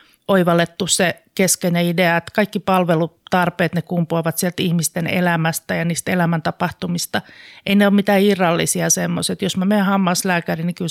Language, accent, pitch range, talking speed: Finnish, native, 165-185 Hz, 150 wpm